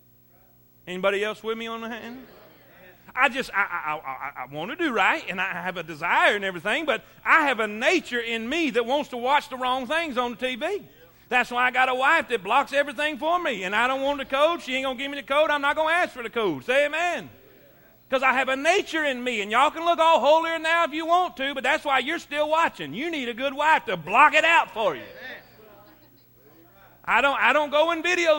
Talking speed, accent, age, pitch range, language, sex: 250 wpm, American, 40-59, 250-320 Hz, English, male